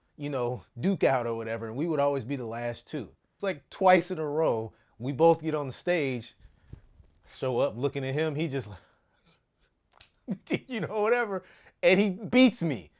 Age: 30-49